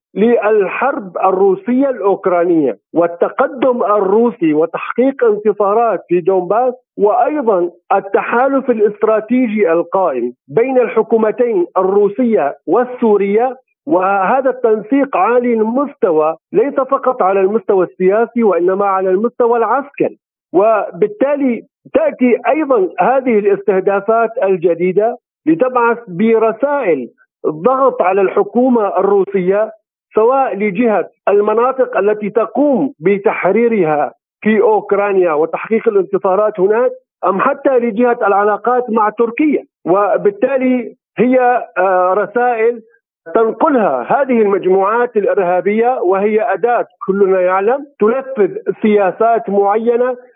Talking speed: 85 wpm